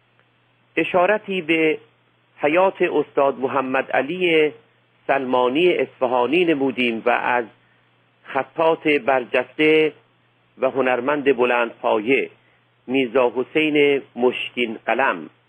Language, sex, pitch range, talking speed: Persian, male, 125-160 Hz, 80 wpm